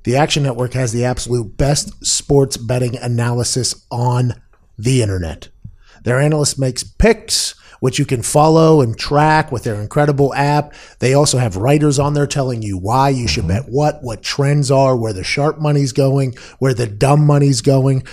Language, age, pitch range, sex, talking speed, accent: English, 30-49, 130-160 Hz, male, 175 wpm, American